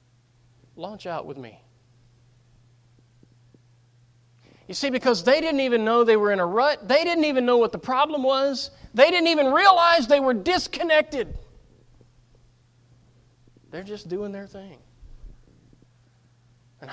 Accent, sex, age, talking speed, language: American, male, 30-49, 130 wpm, English